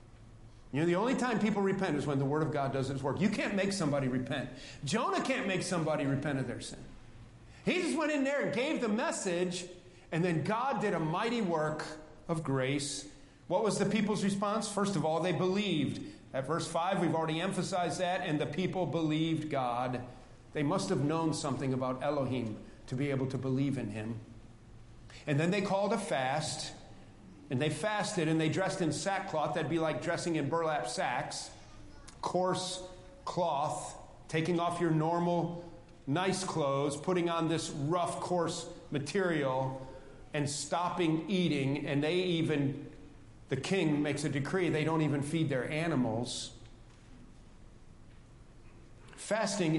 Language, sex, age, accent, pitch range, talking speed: English, male, 40-59, American, 130-180 Hz, 165 wpm